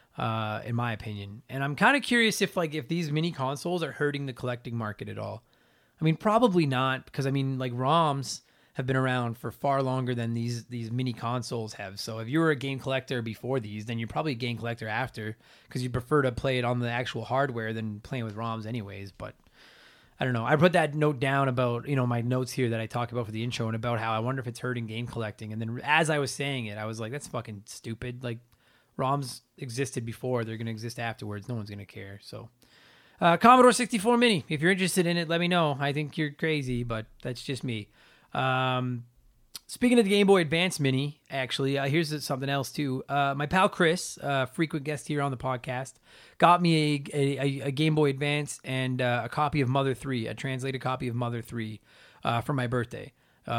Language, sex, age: English, male, 30-49